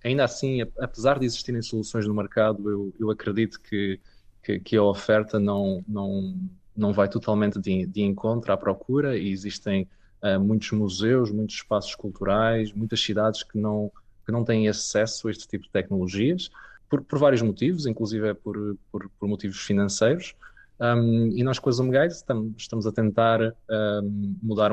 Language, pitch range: Portuguese, 100-115 Hz